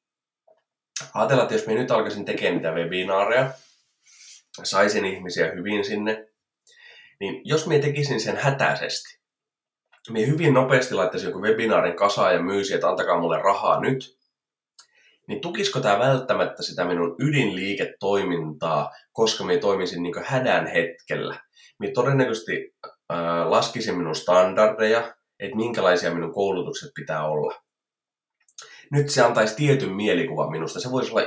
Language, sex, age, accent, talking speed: Finnish, male, 20-39, native, 130 wpm